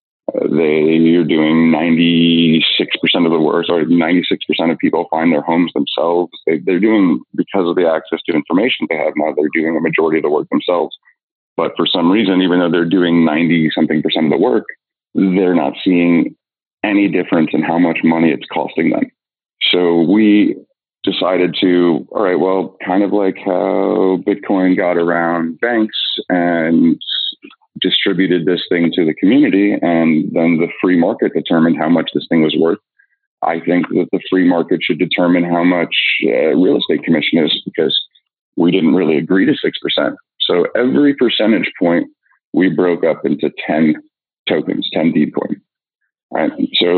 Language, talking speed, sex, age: English, 170 wpm, male, 30-49